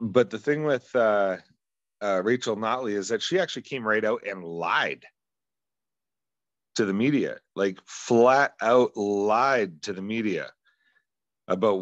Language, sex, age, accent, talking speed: English, male, 40-59, American, 140 wpm